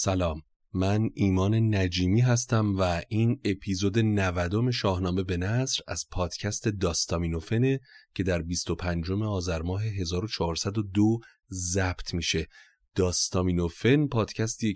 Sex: male